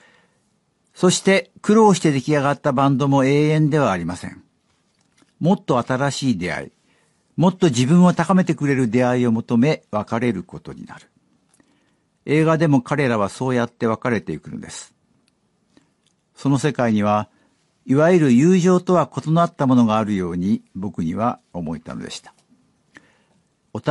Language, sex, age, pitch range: Japanese, male, 60-79, 115-155 Hz